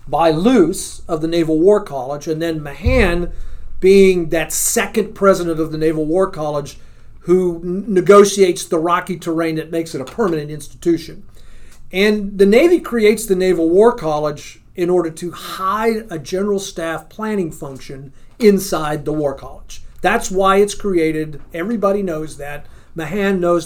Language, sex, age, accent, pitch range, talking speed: English, male, 40-59, American, 155-195 Hz, 150 wpm